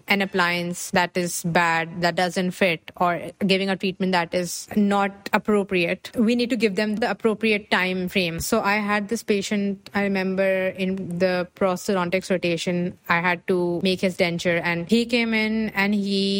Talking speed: 175 wpm